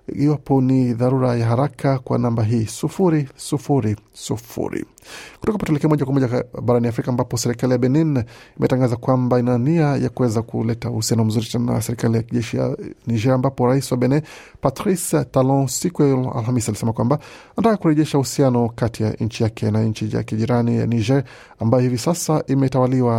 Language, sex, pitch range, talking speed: Swahili, male, 115-140 Hz, 135 wpm